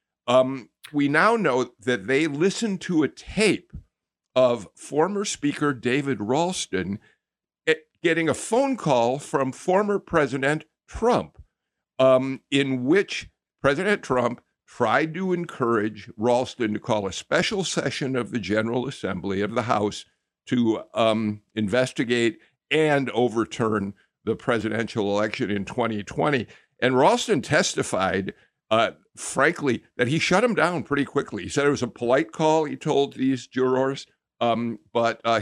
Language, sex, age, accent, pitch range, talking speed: English, male, 50-69, American, 115-165 Hz, 130 wpm